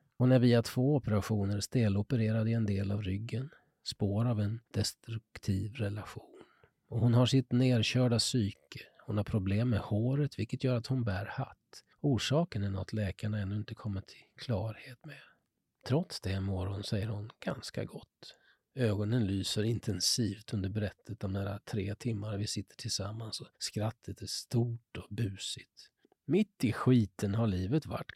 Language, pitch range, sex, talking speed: Swedish, 105-140 Hz, male, 160 wpm